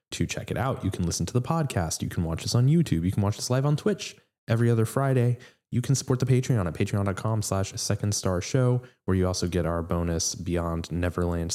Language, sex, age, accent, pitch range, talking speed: English, male, 20-39, American, 95-120 Hz, 225 wpm